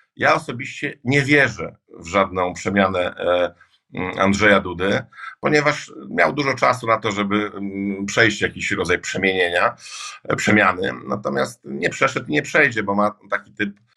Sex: male